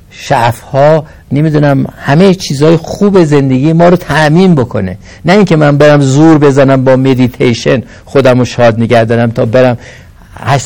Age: 60-79